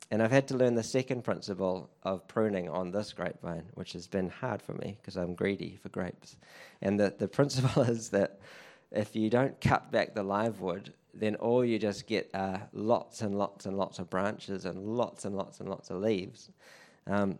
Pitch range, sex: 95-115 Hz, male